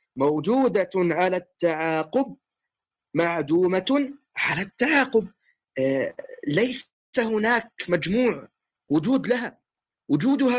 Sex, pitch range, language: male, 190-255 Hz, Arabic